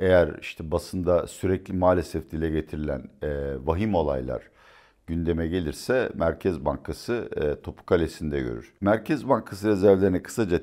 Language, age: Turkish, 60-79